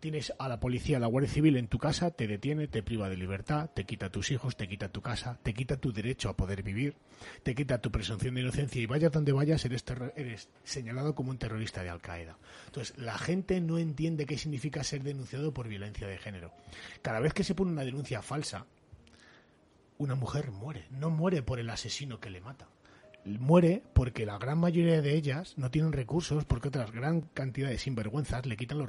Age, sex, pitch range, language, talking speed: 30-49, male, 115-150 Hz, Spanish, 215 wpm